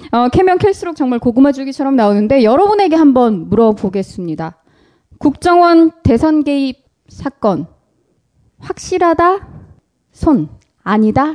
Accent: native